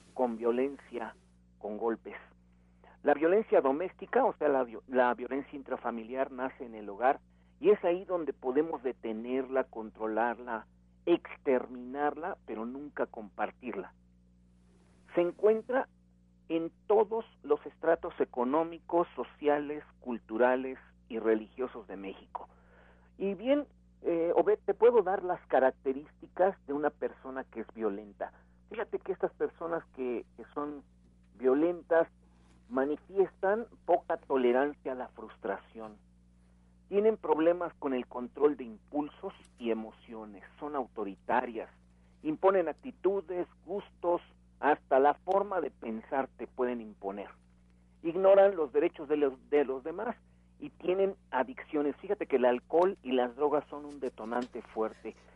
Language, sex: Spanish, male